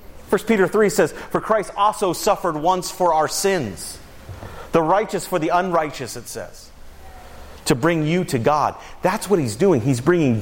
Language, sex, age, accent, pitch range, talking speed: English, male, 40-59, American, 105-160 Hz, 175 wpm